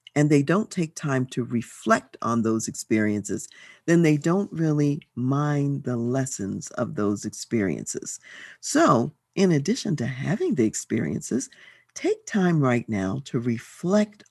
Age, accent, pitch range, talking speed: 50-69, American, 130-205 Hz, 140 wpm